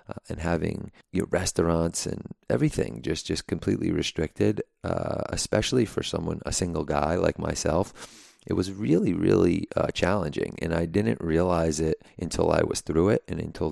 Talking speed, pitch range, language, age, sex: 160 wpm, 75-90 Hz, English, 30-49, male